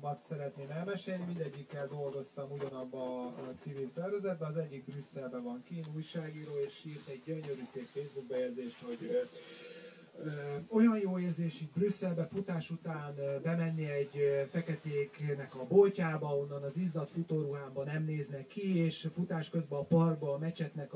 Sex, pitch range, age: male, 140-180 Hz, 30-49